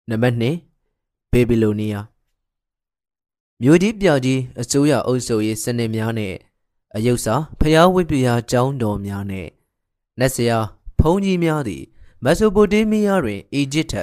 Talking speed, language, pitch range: 45 wpm, English, 105-145 Hz